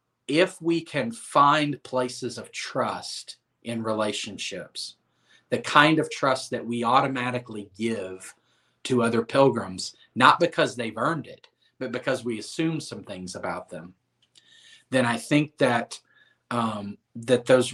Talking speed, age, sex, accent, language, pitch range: 135 wpm, 40-59, male, American, English, 105-125 Hz